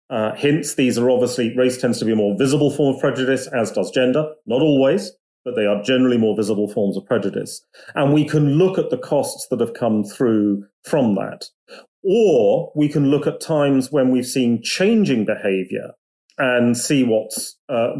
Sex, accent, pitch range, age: male, British, 115-145 Hz, 40-59